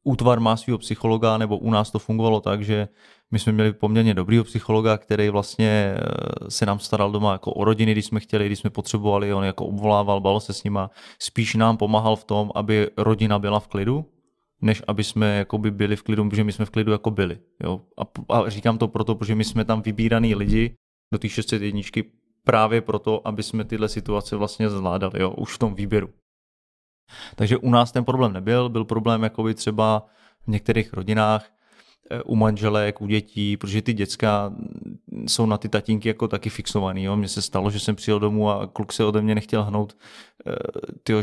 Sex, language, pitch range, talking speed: male, Czech, 105-115 Hz, 195 wpm